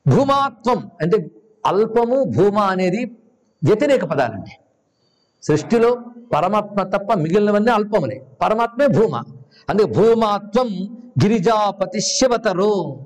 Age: 60-79